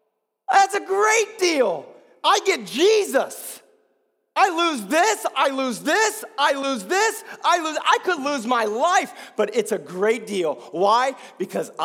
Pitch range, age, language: 260-370 Hz, 40-59, English